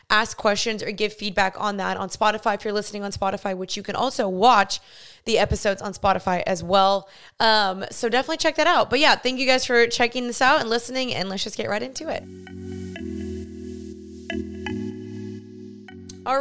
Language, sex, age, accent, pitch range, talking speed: English, female, 20-39, American, 200-245 Hz, 185 wpm